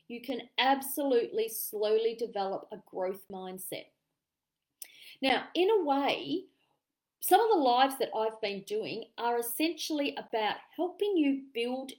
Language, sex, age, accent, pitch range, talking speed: English, female, 40-59, Australian, 210-285 Hz, 130 wpm